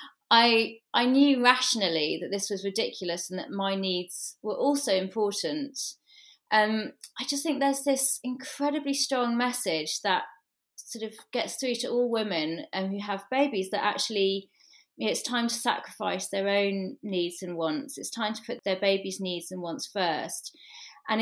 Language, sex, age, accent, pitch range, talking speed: English, female, 30-49, British, 195-265 Hz, 165 wpm